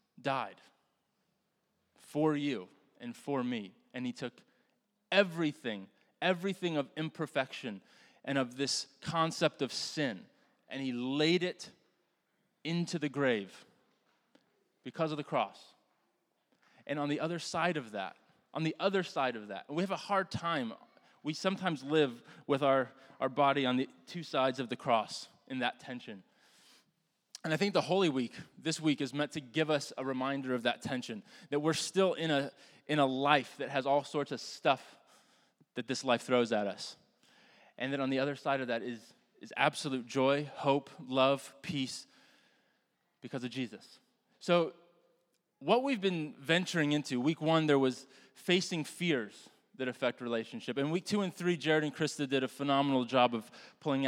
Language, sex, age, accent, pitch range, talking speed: English, male, 20-39, American, 130-170 Hz, 165 wpm